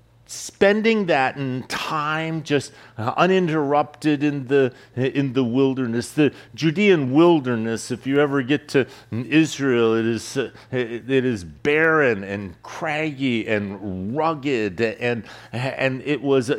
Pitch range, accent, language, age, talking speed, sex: 130-155 Hz, American, English, 50-69, 120 wpm, male